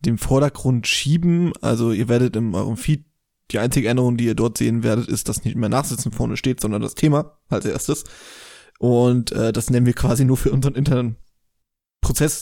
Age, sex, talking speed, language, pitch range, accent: 20-39, male, 195 wpm, German, 120-140 Hz, German